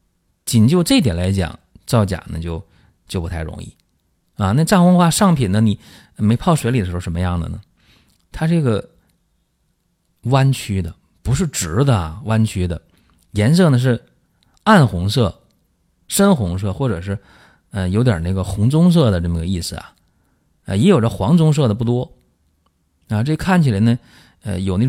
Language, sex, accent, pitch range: Chinese, male, native, 90-130 Hz